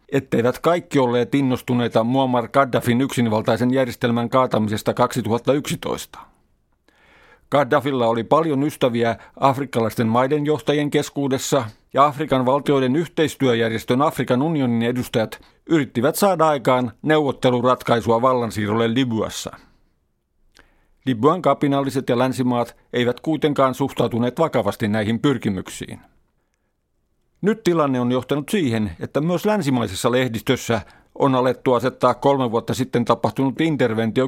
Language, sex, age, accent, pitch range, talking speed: Finnish, male, 50-69, native, 115-145 Hz, 100 wpm